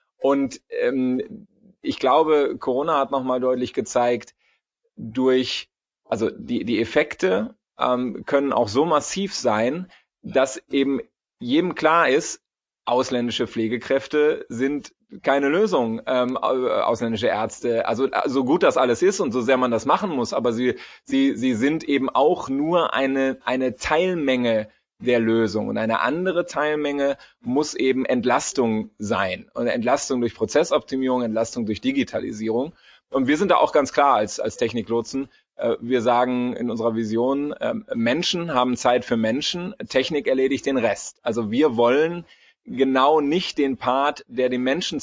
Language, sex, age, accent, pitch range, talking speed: German, male, 30-49, German, 120-150 Hz, 150 wpm